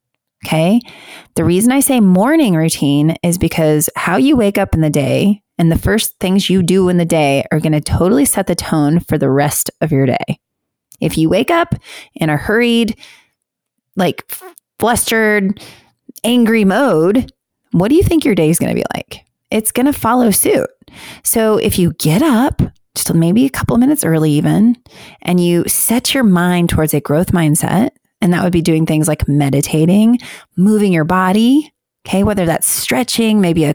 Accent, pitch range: American, 160-225 Hz